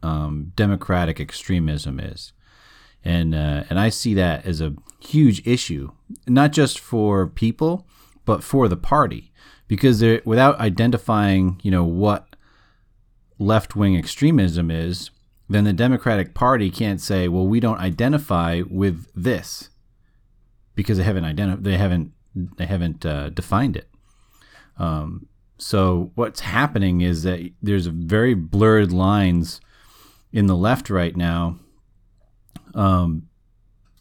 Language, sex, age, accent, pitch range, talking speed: English, male, 30-49, American, 85-115 Hz, 125 wpm